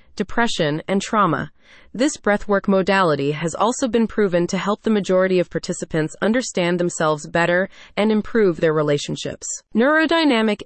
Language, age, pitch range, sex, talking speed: English, 20-39, 175-230 Hz, female, 135 wpm